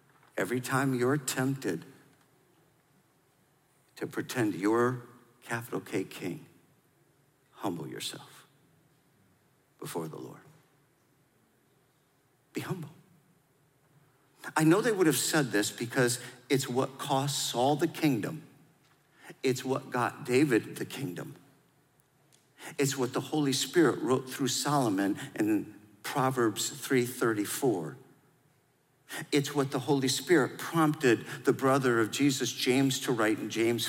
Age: 50-69